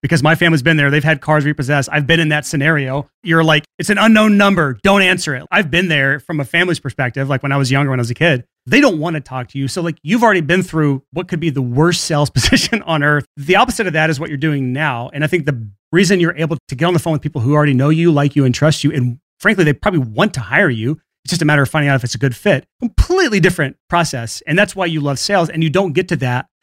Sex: male